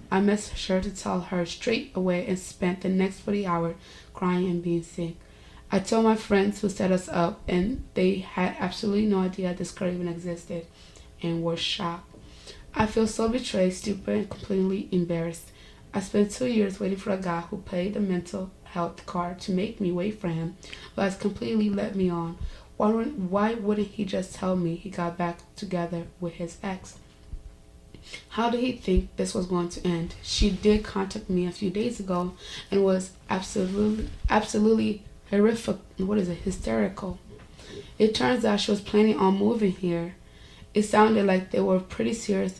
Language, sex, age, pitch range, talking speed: English, female, 20-39, 175-205 Hz, 180 wpm